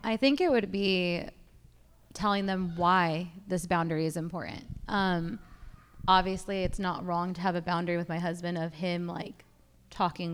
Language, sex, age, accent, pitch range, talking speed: English, female, 20-39, American, 180-230 Hz, 165 wpm